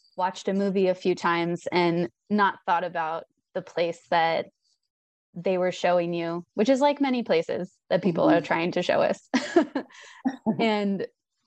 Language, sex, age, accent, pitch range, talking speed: English, female, 20-39, American, 180-220 Hz, 155 wpm